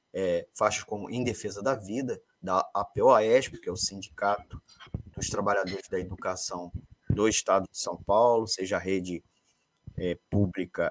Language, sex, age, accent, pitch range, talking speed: Portuguese, male, 20-39, Brazilian, 95-120 Hz, 145 wpm